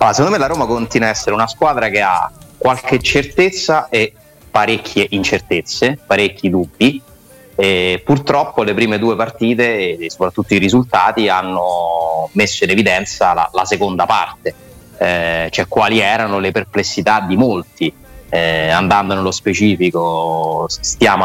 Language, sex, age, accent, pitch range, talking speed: Italian, male, 30-49, native, 90-105 Hz, 140 wpm